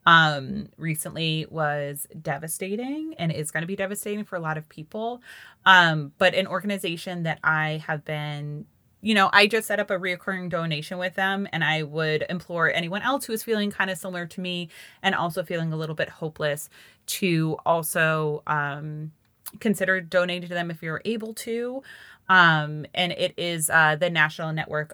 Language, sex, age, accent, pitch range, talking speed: English, female, 20-39, American, 150-185 Hz, 180 wpm